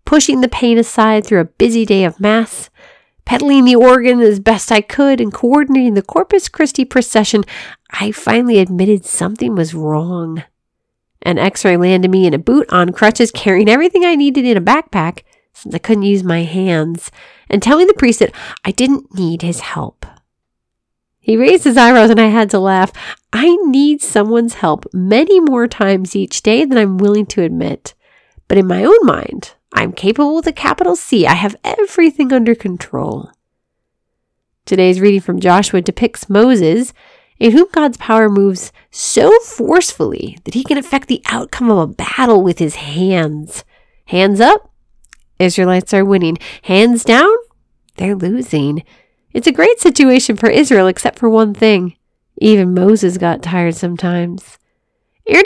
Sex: female